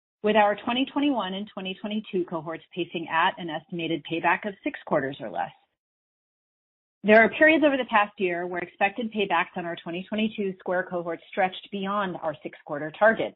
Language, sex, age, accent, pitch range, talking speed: English, female, 30-49, American, 170-225 Hz, 165 wpm